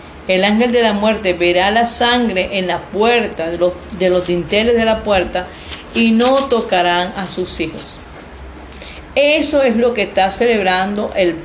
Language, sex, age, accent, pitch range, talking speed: Spanish, female, 40-59, American, 175-235 Hz, 170 wpm